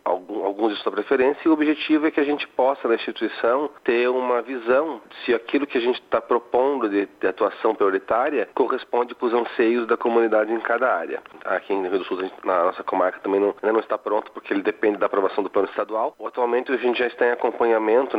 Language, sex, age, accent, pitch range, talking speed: Portuguese, male, 40-59, Brazilian, 100-125 Hz, 230 wpm